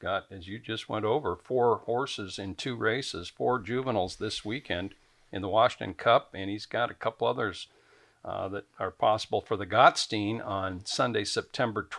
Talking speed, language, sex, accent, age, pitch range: 175 wpm, English, male, American, 60-79, 105-130 Hz